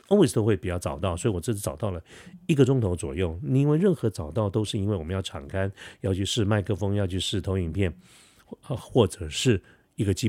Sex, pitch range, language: male, 90-115 Hz, Chinese